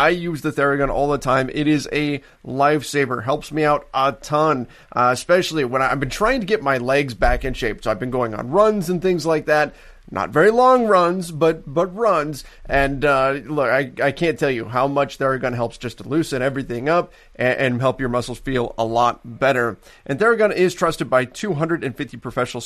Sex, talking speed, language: male, 210 wpm, English